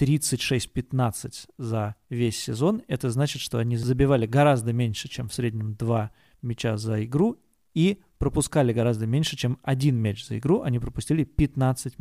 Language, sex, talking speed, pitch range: Russian, male, 145 wpm, 120-150 Hz